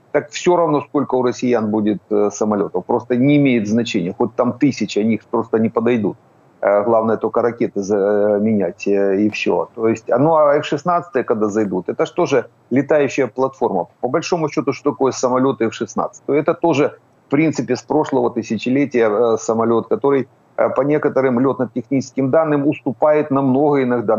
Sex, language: male, Ukrainian